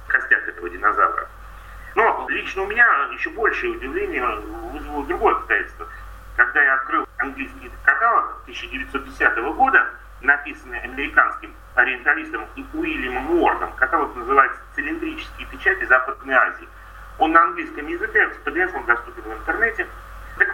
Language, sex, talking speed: Russian, male, 125 wpm